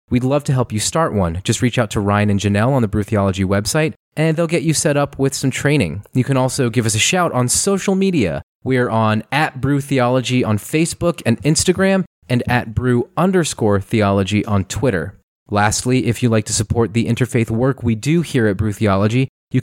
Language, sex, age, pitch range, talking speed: English, male, 30-49, 110-145 Hz, 215 wpm